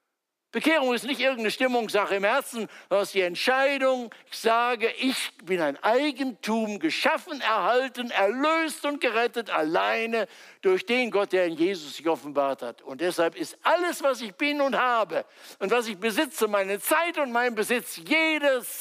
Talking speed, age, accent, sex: 160 wpm, 60-79, German, male